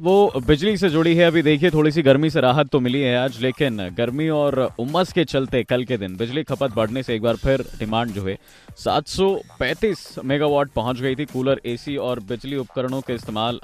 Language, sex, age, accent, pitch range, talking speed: Hindi, male, 20-39, native, 115-155 Hz, 205 wpm